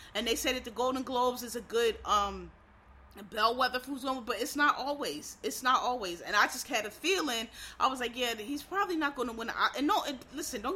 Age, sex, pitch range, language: 30-49, female, 235-295 Hz, English